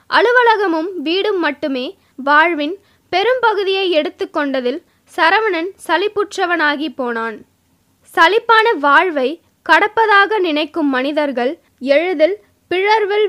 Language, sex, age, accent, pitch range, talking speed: Tamil, female, 20-39, native, 295-395 Hz, 75 wpm